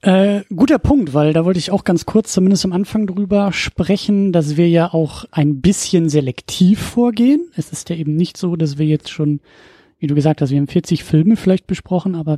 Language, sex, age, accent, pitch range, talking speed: German, male, 30-49, German, 155-195 Hz, 215 wpm